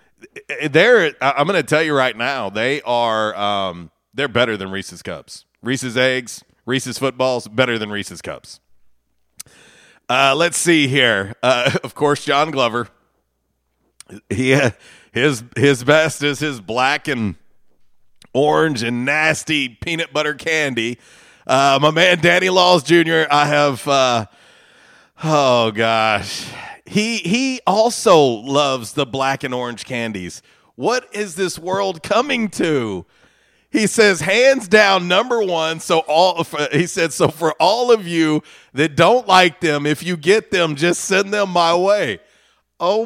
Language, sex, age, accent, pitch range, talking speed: English, male, 40-59, American, 130-185 Hz, 140 wpm